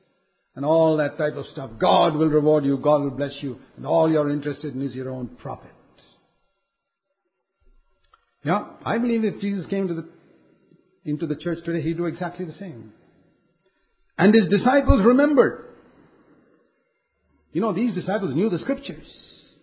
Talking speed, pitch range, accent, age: 160 wpm, 150-225 Hz, Indian, 60-79